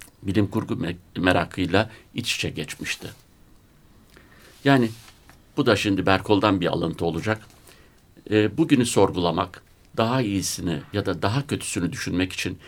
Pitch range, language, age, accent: 90-120 Hz, Turkish, 60-79, native